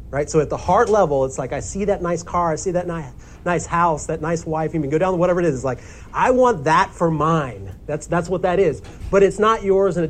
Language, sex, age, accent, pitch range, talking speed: English, male, 40-59, American, 135-210 Hz, 280 wpm